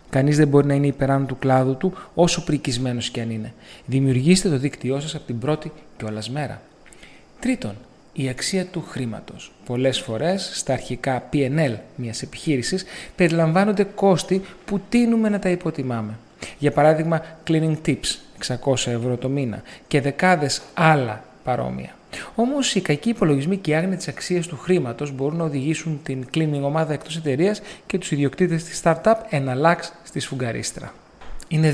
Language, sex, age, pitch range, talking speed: Greek, male, 30-49, 130-180 Hz, 155 wpm